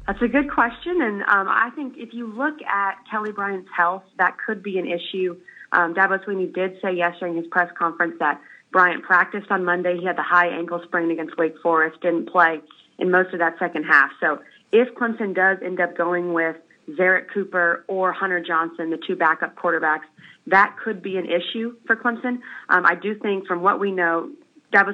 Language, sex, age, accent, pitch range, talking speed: English, female, 30-49, American, 165-195 Hz, 205 wpm